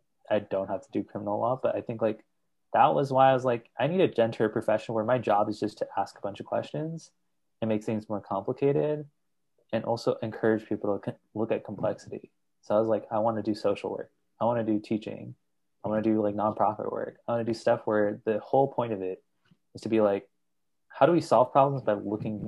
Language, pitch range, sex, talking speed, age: English, 100-115 Hz, male, 240 wpm, 20-39